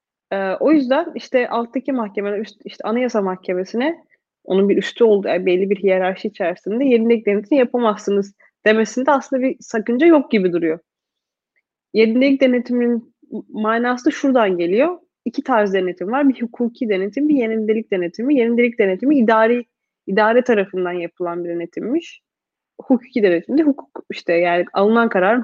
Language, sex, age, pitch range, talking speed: Turkish, female, 30-49, 195-255 Hz, 135 wpm